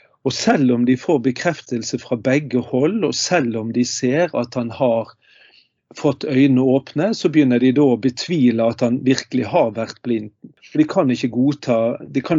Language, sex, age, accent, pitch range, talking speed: English, male, 40-59, Swedish, 120-145 Hz, 155 wpm